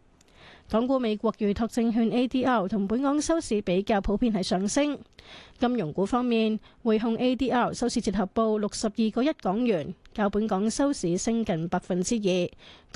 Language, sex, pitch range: Chinese, female, 200-245 Hz